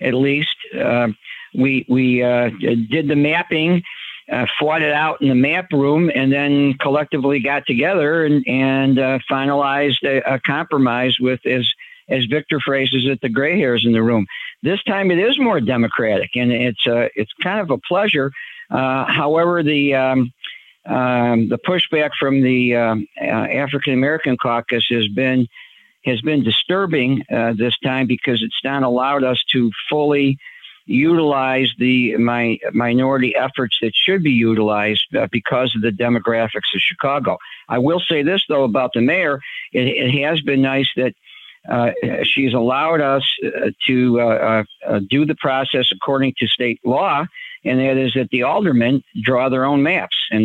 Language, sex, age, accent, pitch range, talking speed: English, male, 50-69, American, 120-145 Hz, 170 wpm